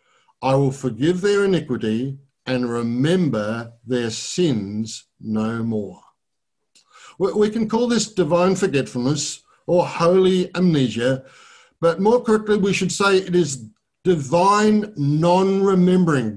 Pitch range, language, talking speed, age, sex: 145-210 Hz, English, 110 wpm, 50-69, male